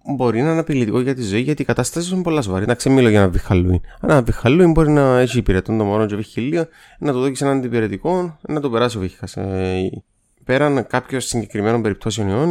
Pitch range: 95-140 Hz